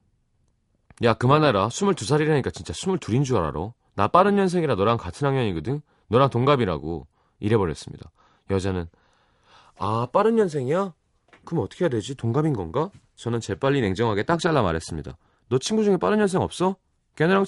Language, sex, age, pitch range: Korean, male, 30-49, 85-130 Hz